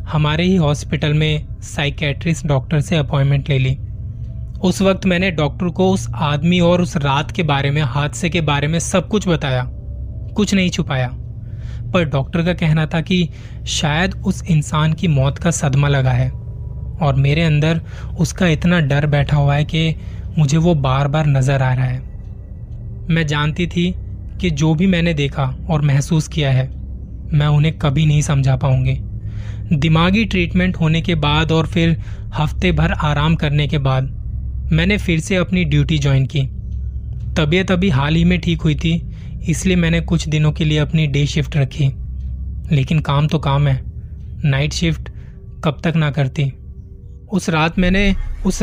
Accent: native